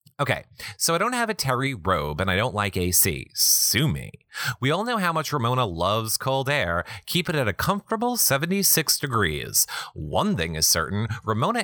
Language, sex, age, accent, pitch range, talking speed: English, male, 30-49, American, 100-165 Hz, 185 wpm